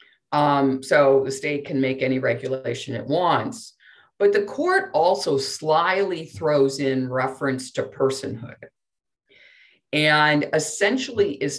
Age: 50-69